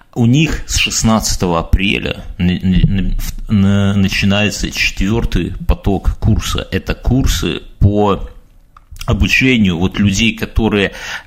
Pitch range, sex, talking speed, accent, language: 90-110 Hz, male, 85 wpm, native, Russian